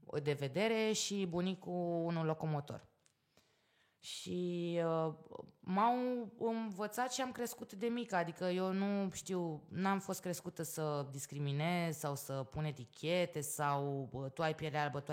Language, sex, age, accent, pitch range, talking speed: Romanian, female, 20-39, native, 145-190 Hz, 135 wpm